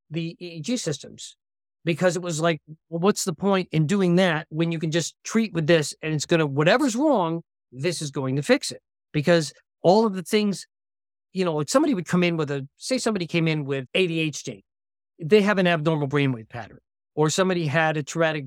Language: English